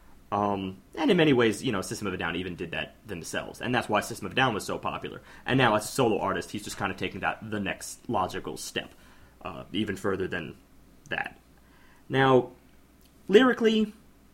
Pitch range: 100-125 Hz